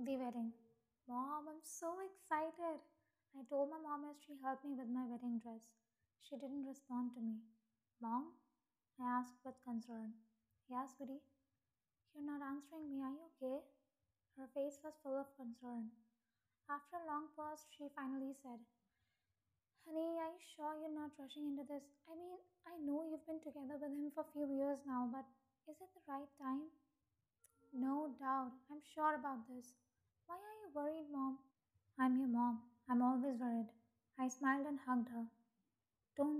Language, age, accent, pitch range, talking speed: English, 20-39, Indian, 240-290 Hz, 170 wpm